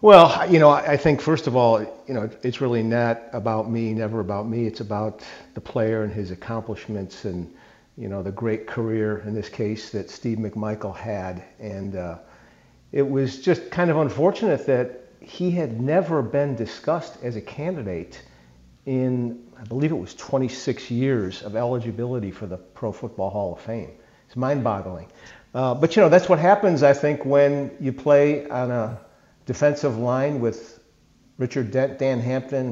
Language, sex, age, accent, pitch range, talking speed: English, male, 50-69, American, 110-135 Hz, 170 wpm